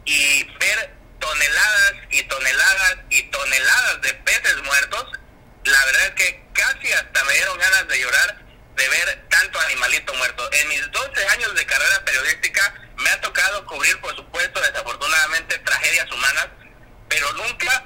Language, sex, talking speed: Spanish, male, 150 wpm